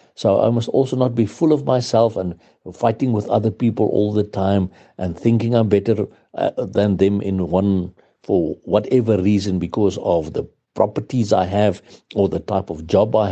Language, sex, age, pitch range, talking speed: English, male, 60-79, 95-120 Hz, 185 wpm